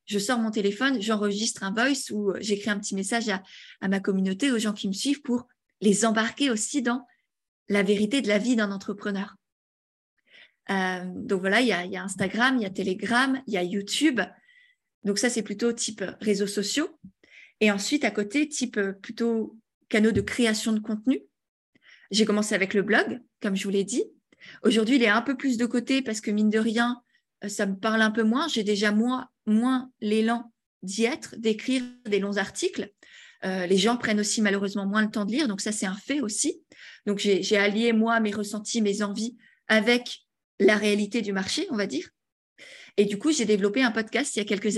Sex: female